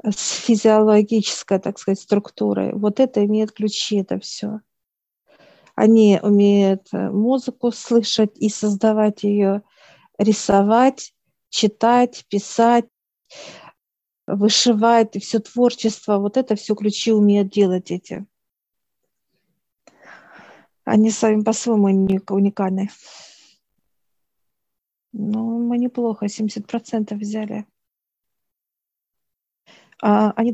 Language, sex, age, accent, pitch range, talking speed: Russian, female, 50-69, native, 200-225 Hz, 85 wpm